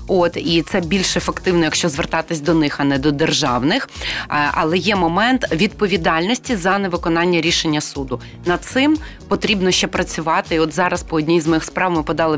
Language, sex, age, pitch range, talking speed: Ukrainian, female, 30-49, 160-195 Hz, 175 wpm